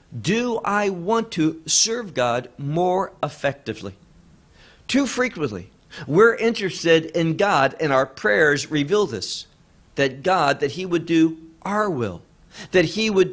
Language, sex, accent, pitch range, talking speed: English, male, American, 155-195 Hz, 135 wpm